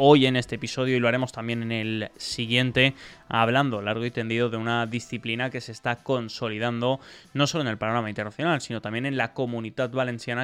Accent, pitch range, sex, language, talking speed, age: Spanish, 115-135 Hz, male, Spanish, 195 wpm, 20-39